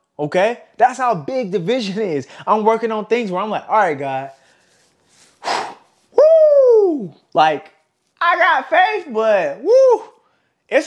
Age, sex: 20-39, male